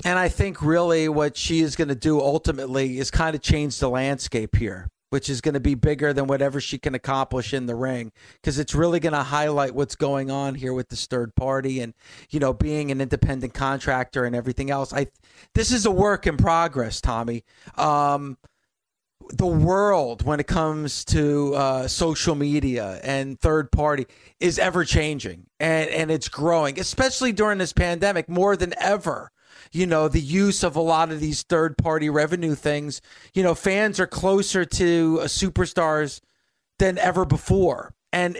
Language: English